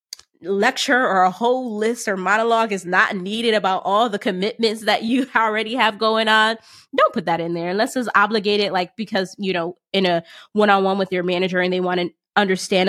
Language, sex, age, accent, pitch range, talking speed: English, female, 20-39, American, 190-255 Hz, 200 wpm